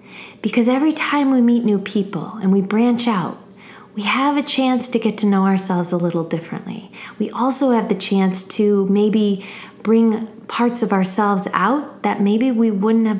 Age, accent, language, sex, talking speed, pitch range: 30-49, American, English, female, 180 wpm, 190-225 Hz